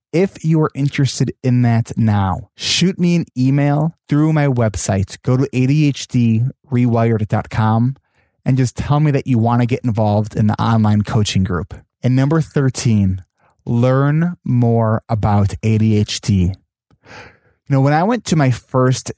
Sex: male